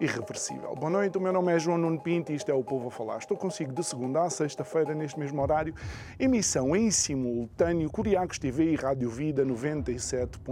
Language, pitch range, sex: Portuguese, 130-190 Hz, male